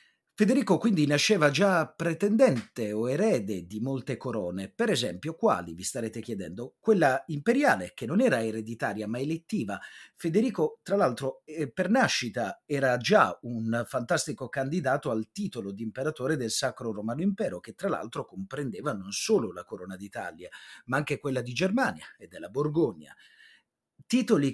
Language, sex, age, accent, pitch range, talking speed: Italian, male, 30-49, native, 115-190 Hz, 145 wpm